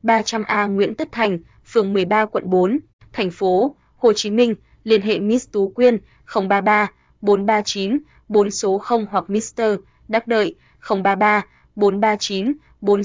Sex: female